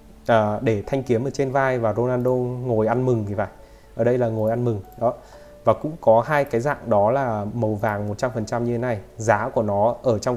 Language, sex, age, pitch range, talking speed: Vietnamese, male, 20-39, 110-130 Hz, 230 wpm